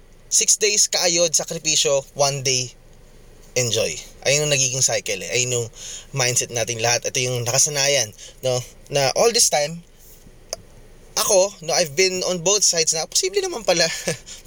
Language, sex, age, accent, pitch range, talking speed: English, male, 20-39, Filipino, 120-155 Hz, 145 wpm